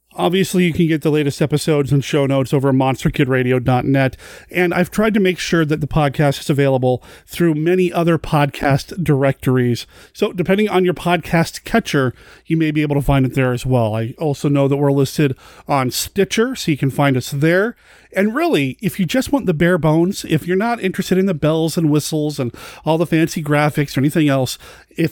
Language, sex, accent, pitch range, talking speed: English, male, American, 135-180 Hz, 205 wpm